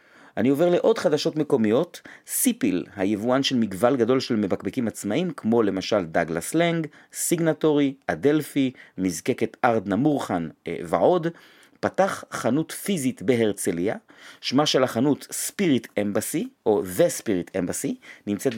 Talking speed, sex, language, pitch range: 120 wpm, male, Hebrew, 105-150 Hz